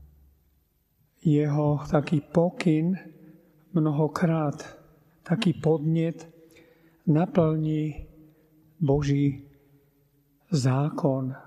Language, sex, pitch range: Slovak, male, 140-160 Hz